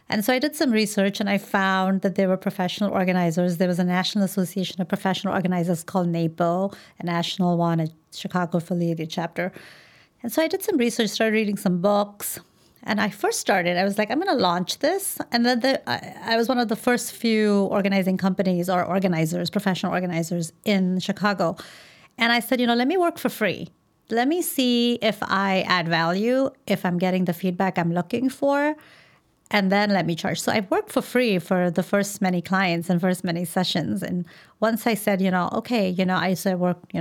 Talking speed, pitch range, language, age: 210 wpm, 175-210 Hz, English, 30-49